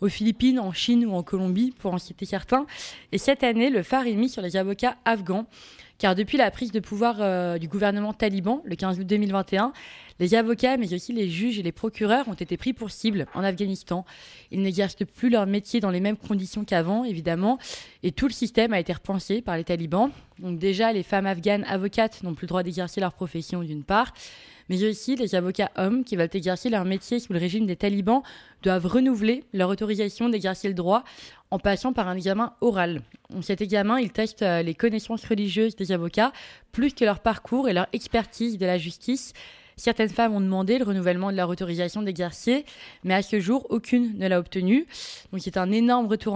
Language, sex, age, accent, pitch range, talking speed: French, female, 20-39, French, 185-230 Hz, 205 wpm